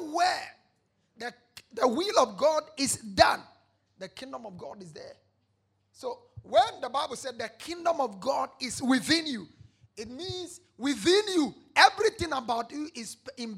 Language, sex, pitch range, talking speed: English, male, 195-280 Hz, 155 wpm